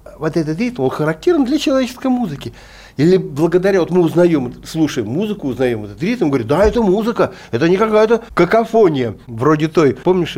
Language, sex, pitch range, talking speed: Russian, male, 120-180 Hz, 170 wpm